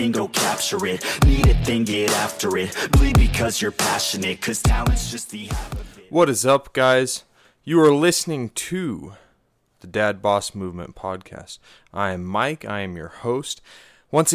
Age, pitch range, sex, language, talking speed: 20-39, 100-135 Hz, male, English, 135 wpm